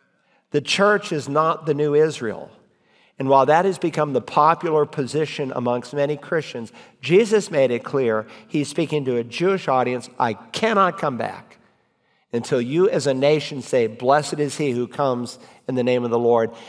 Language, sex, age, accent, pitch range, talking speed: English, male, 50-69, American, 125-160 Hz, 175 wpm